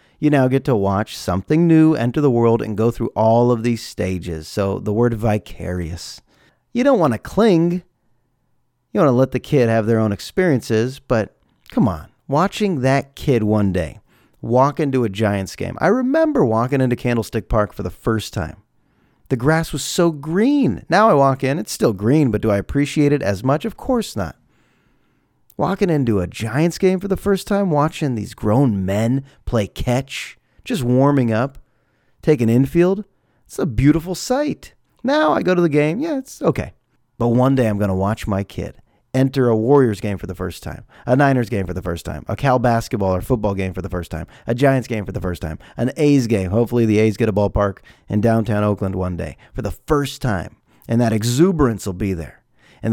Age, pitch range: 30-49, 105-145 Hz